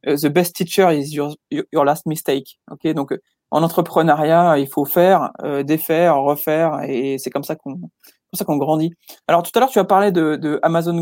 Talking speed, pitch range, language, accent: 205 wpm, 140-170 Hz, French, French